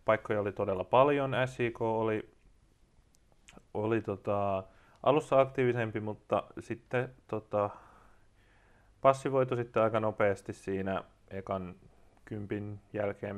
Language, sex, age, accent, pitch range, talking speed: Finnish, male, 20-39, native, 100-120 Hz, 95 wpm